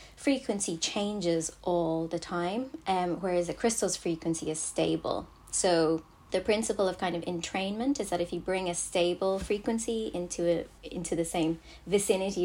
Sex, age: female, 20-39